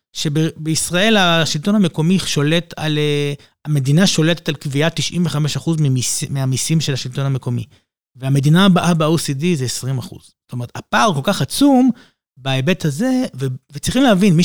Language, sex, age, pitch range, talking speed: Hebrew, male, 30-49, 145-200 Hz, 140 wpm